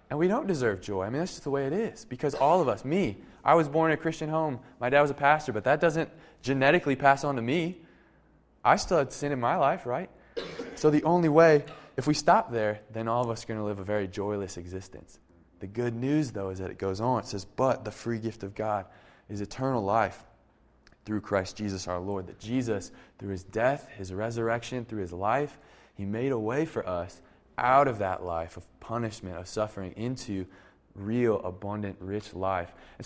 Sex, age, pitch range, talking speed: male, 20-39, 105-145 Hz, 220 wpm